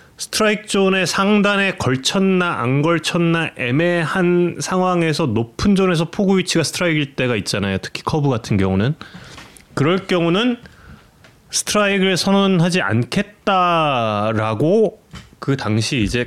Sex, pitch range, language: male, 125-185 Hz, Korean